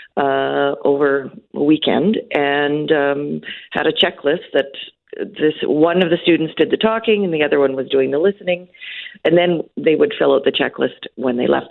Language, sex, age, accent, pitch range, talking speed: English, female, 50-69, American, 140-195 Hz, 190 wpm